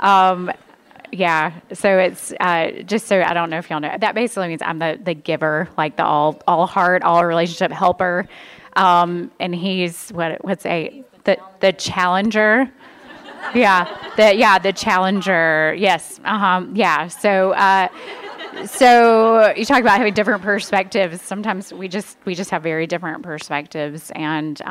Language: English